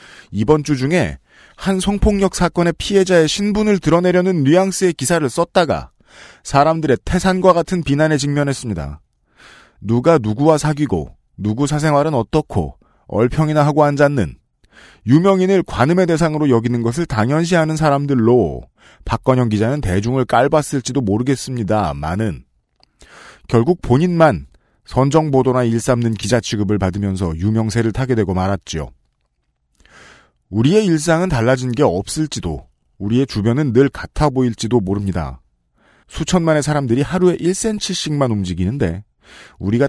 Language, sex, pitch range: Korean, male, 105-160 Hz